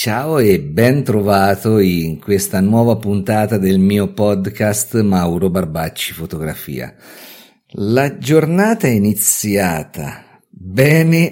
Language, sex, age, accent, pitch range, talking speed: Italian, male, 50-69, native, 85-110 Hz, 100 wpm